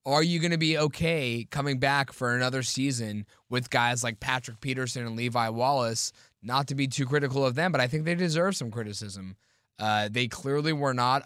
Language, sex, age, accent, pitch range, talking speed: English, male, 20-39, American, 125-165 Hz, 205 wpm